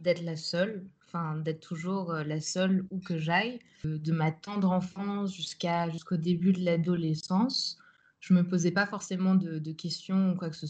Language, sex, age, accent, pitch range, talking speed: French, female, 20-39, French, 160-190 Hz, 195 wpm